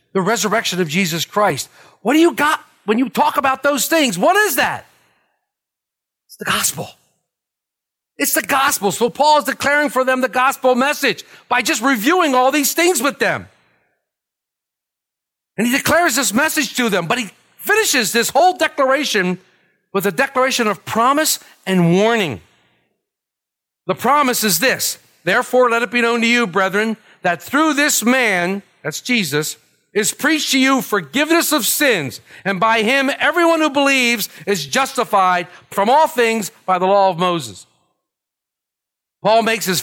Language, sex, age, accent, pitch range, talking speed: English, male, 50-69, American, 170-265 Hz, 160 wpm